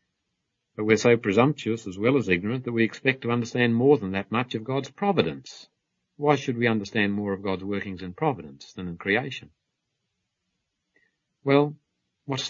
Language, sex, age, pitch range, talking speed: English, male, 50-69, 85-115 Hz, 170 wpm